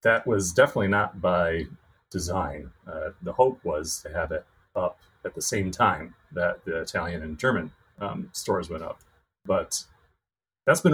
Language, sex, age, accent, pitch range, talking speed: English, male, 30-49, American, 90-110 Hz, 165 wpm